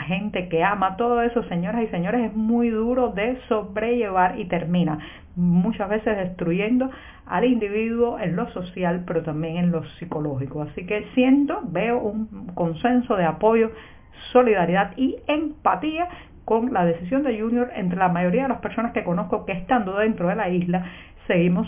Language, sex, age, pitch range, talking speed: Spanish, female, 50-69, 170-225 Hz, 165 wpm